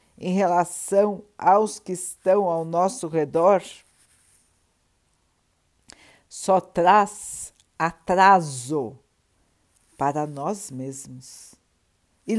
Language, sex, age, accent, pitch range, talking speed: Portuguese, female, 60-79, Brazilian, 150-205 Hz, 75 wpm